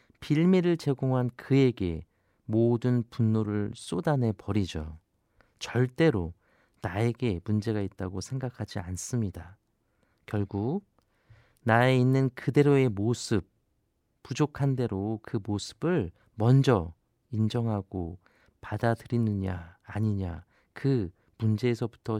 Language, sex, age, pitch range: Korean, male, 40-59, 100-130 Hz